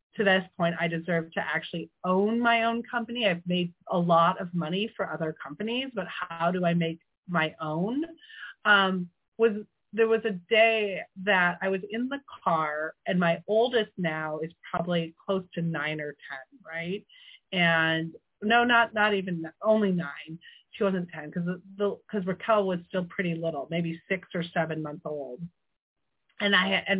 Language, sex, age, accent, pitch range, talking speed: English, female, 30-49, American, 170-225 Hz, 170 wpm